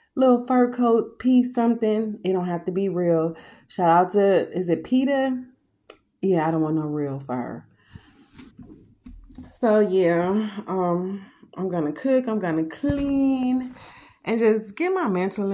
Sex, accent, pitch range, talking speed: female, American, 165-200 Hz, 155 wpm